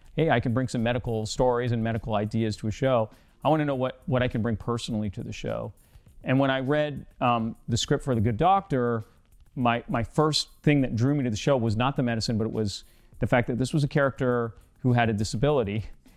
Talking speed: 240 wpm